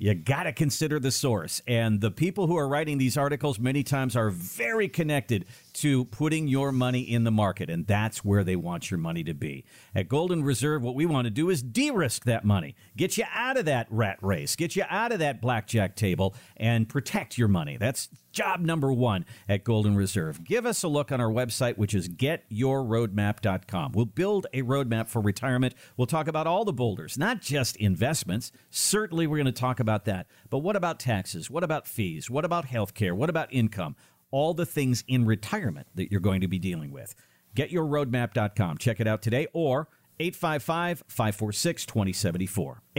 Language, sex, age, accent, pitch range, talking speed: English, male, 50-69, American, 110-160 Hz, 195 wpm